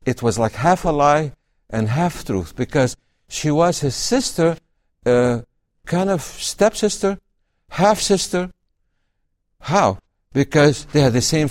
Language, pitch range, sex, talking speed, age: English, 120-185 Hz, male, 130 wpm, 60-79